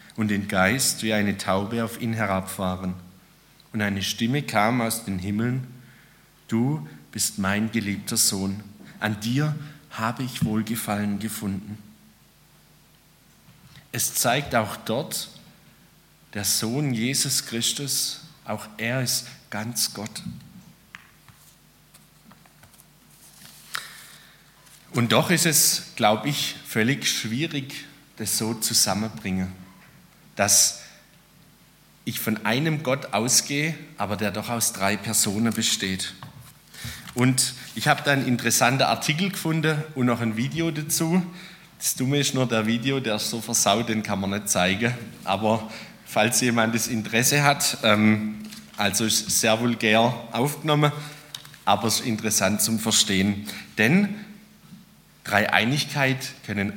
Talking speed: 120 wpm